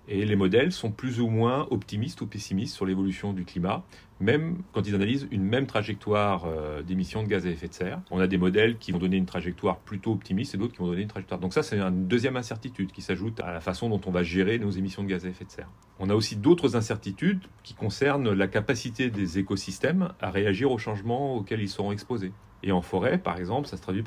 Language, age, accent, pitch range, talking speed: French, 40-59, French, 95-110 Hz, 240 wpm